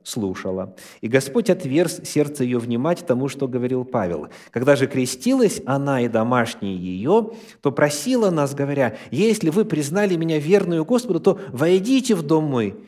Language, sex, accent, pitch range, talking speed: Russian, male, native, 115-180 Hz, 155 wpm